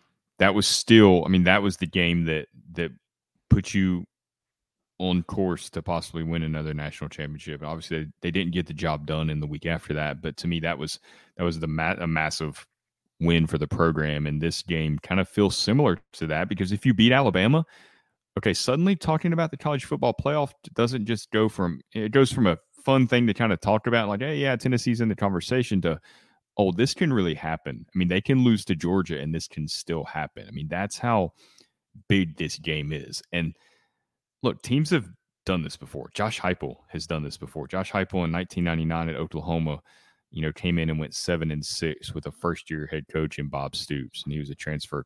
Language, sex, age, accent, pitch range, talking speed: English, male, 30-49, American, 80-100 Hz, 215 wpm